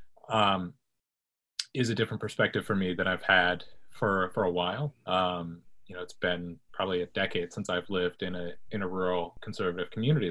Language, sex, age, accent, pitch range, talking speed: English, male, 30-49, American, 90-115 Hz, 185 wpm